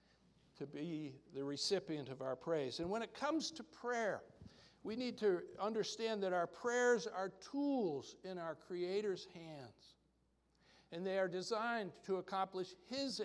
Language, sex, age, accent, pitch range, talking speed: English, male, 60-79, American, 150-210 Hz, 150 wpm